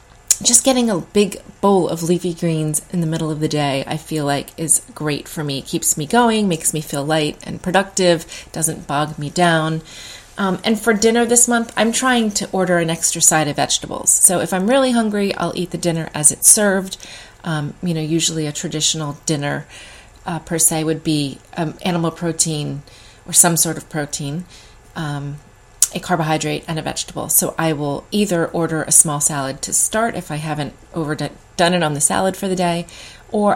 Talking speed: 195 wpm